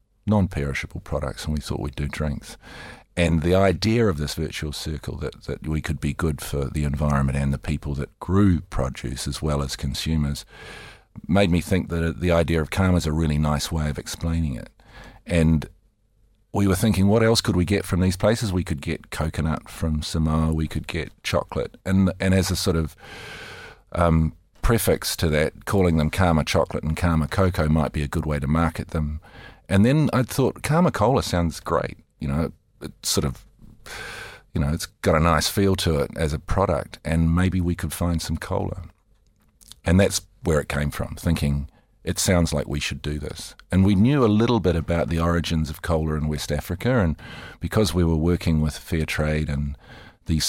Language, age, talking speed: English, 40-59, 195 wpm